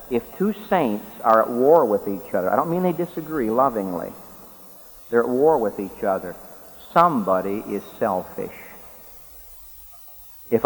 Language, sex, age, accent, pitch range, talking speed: English, male, 50-69, American, 105-150 Hz, 140 wpm